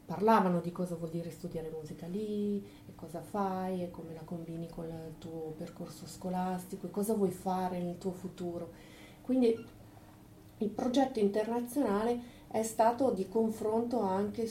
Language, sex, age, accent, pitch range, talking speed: Italian, female, 40-59, native, 170-215 Hz, 145 wpm